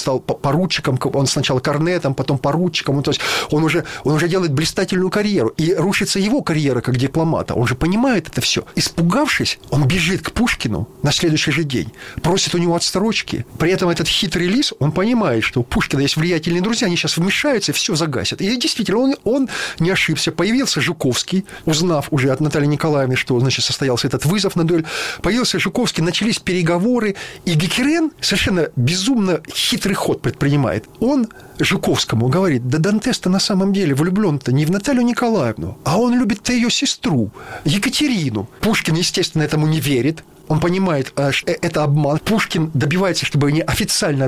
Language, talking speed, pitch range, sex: Russian, 170 wpm, 145-195 Hz, male